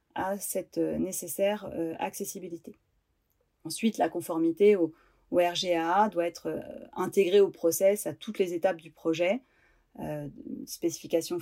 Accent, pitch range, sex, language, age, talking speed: French, 165-205 Hz, female, French, 30-49, 110 wpm